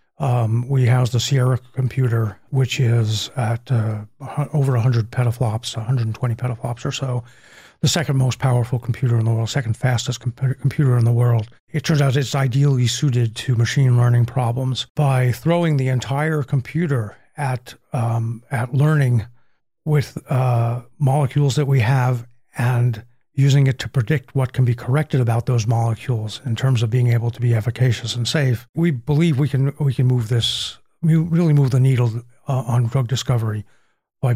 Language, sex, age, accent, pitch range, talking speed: English, male, 40-59, American, 120-140 Hz, 170 wpm